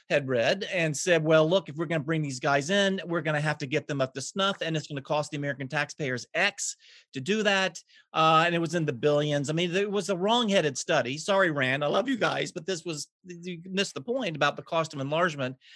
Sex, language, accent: male, English, American